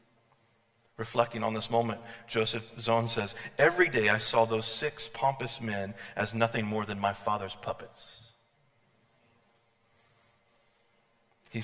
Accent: American